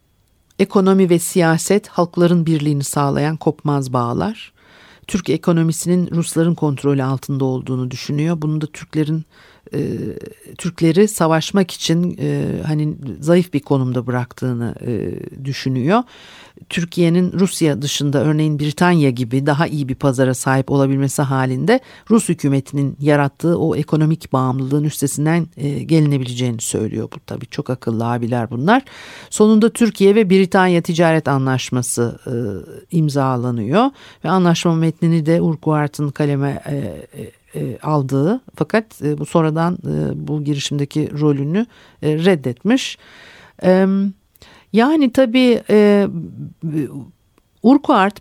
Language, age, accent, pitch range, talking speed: Turkish, 50-69, native, 140-190 Hz, 100 wpm